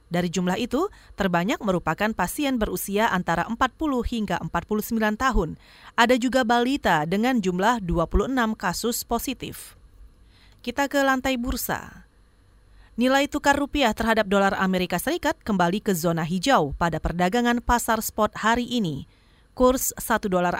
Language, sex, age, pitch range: Indonesian, female, 30-49, 175-245 Hz